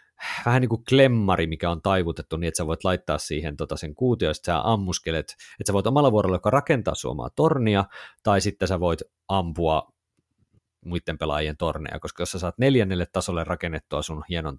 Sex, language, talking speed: male, Finnish, 185 wpm